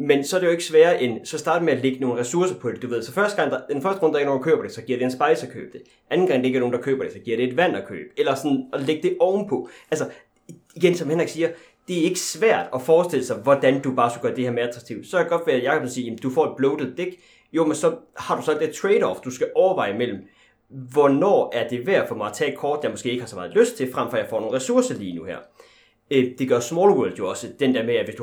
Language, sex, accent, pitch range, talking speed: Danish, male, native, 125-190 Hz, 320 wpm